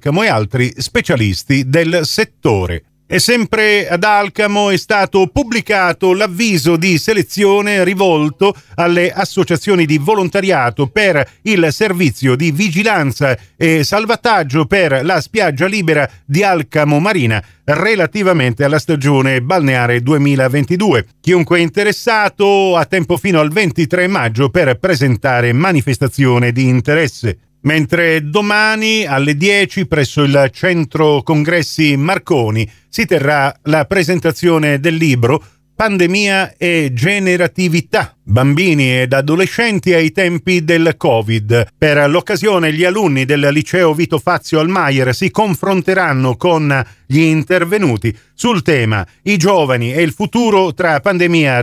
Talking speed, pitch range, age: 115 wpm, 140-190 Hz, 40-59